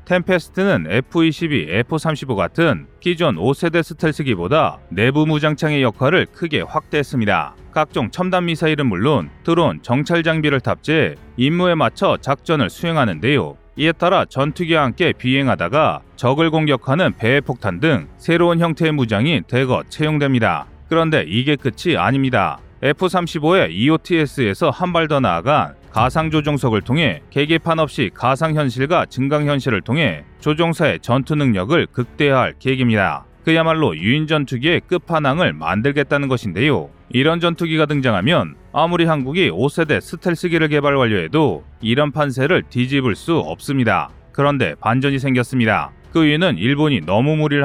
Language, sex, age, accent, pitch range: Korean, male, 30-49, native, 125-160 Hz